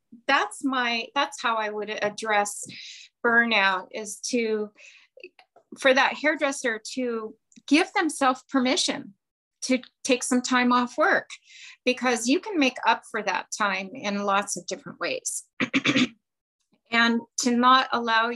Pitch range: 205-250 Hz